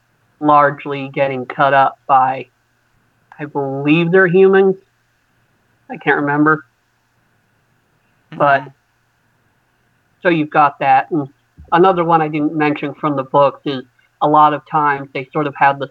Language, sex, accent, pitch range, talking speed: English, male, American, 130-145 Hz, 135 wpm